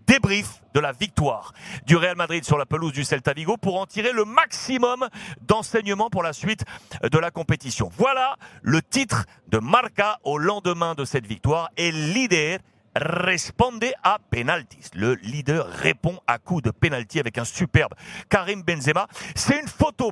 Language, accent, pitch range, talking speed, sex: French, French, 145-210 Hz, 160 wpm, male